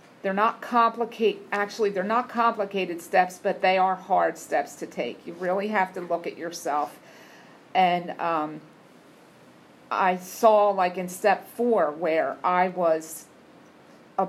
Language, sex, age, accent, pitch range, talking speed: English, female, 50-69, American, 180-225 Hz, 145 wpm